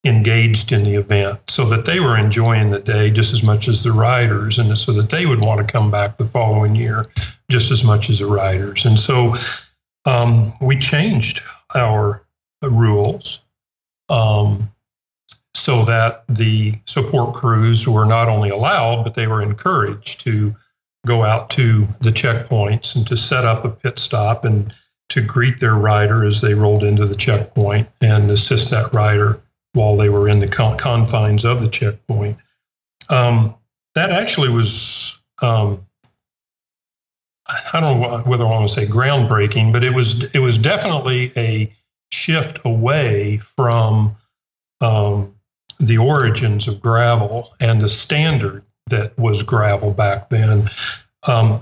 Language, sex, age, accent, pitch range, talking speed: English, male, 50-69, American, 105-125 Hz, 155 wpm